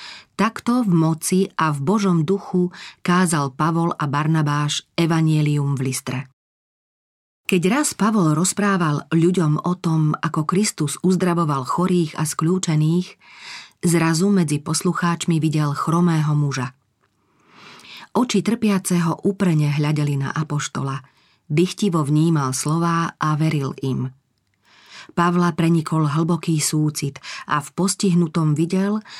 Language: Slovak